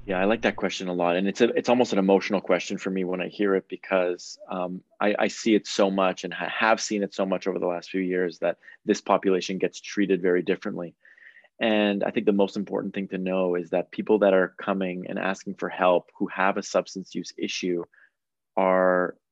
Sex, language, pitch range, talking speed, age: male, English, 90-105 Hz, 225 wpm, 20-39